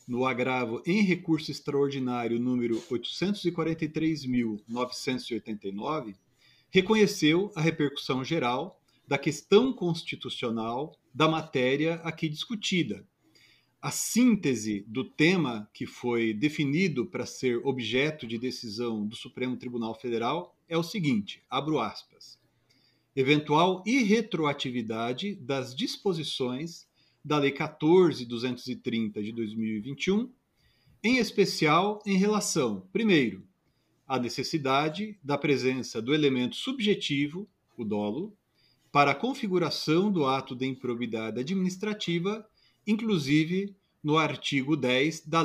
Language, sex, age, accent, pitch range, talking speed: Portuguese, male, 40-59, Brazilian, 125-180 Hz, 100 wpm